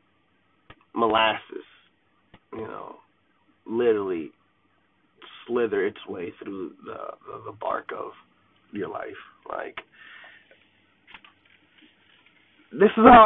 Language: English